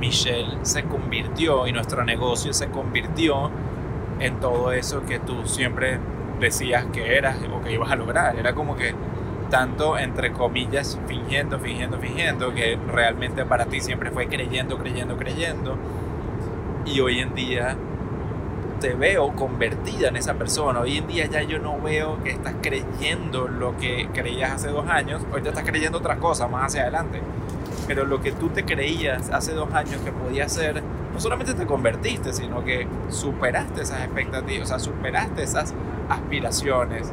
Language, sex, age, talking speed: Spanish, male, 20-39, 165 wpm